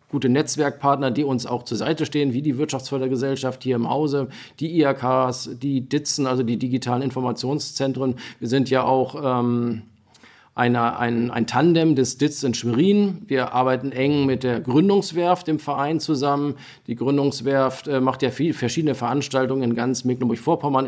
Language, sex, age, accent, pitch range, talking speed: German, male, 40-59, German, 125-140 Hz, 160 wpm